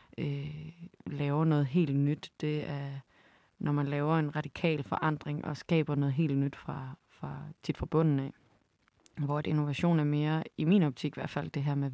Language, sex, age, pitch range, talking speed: Danish, female, 30-49, 140-155 Hz, 175 wpm